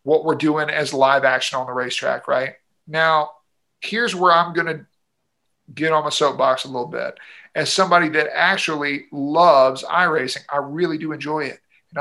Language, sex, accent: English, male, American